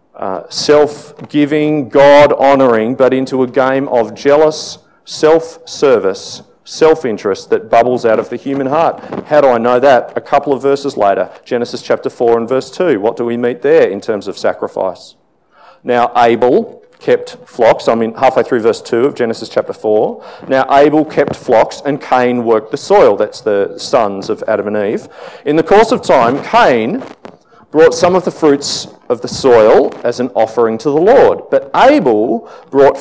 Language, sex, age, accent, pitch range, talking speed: English, male, 40-59, Australian, 120-180 Hz, 175 wpm